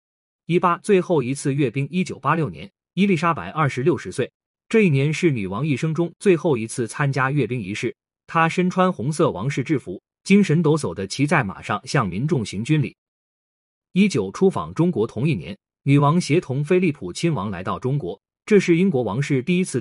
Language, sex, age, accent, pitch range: Chinese, male, 30-49, native, 135-180 Hz